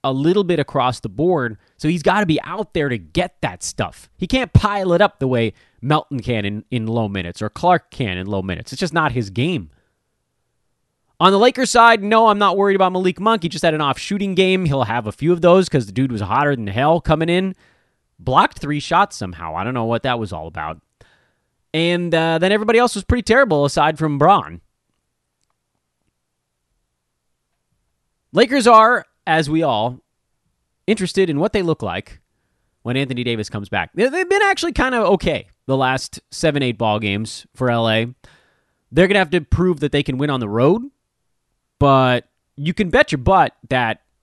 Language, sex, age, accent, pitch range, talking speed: English, male, 30-49, American, 115-180 Hz, 200 wpm